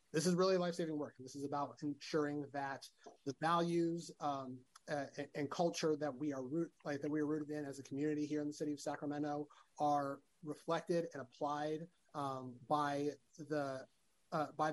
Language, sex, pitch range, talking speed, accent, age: English, male, 140-160 Hz, 180 wpm, American, 30-49